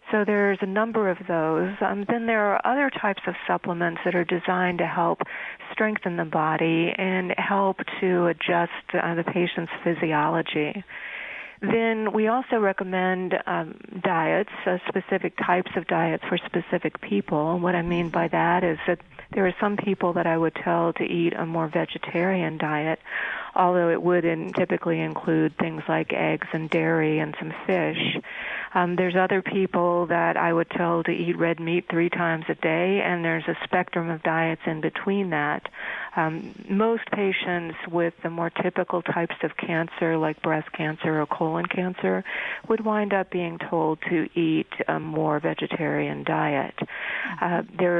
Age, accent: 40-59, American